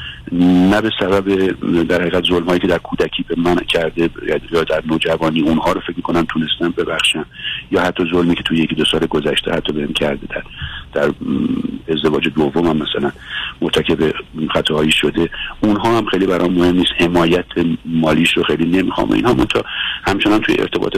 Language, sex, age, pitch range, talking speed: Persian, male, 50-69, 80-110 Hz, 165 wpm